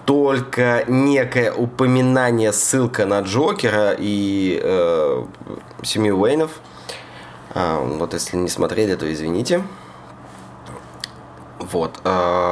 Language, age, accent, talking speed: Russian, 20-39, native, 90 wpm